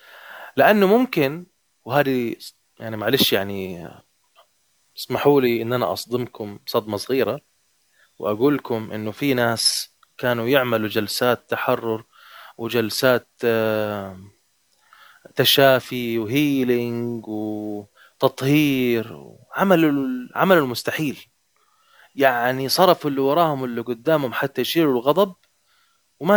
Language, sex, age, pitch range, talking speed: Arabic, male, 20-39, 115-145 Hz, 90 wpm